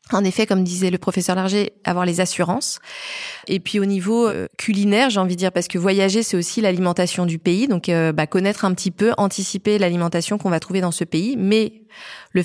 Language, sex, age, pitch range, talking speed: French, female, 20-39, 185-220 Hz, 210 wpm